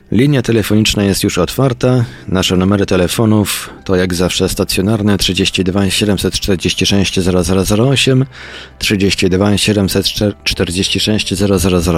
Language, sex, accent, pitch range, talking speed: Polish, male, native, 90-110 Hz, 85 wpm